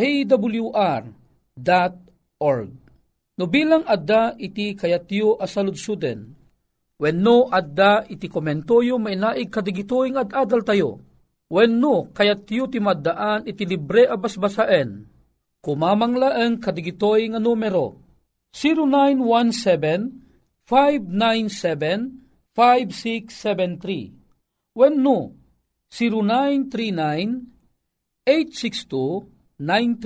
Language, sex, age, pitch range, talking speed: Filipino, male, 50-69, 175-235 Hz, 70 wpm